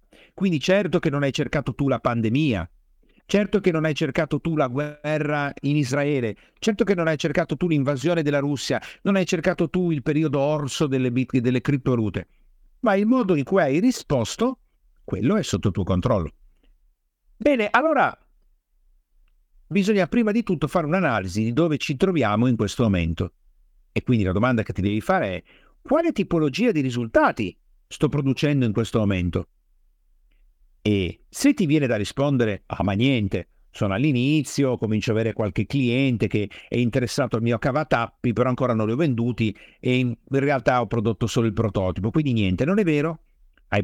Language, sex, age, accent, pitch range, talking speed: Italian, male, 50-69, native, 110-160 Hz, 175 wpm